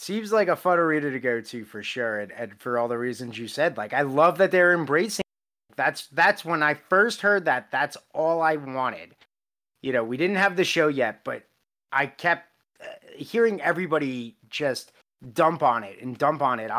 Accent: American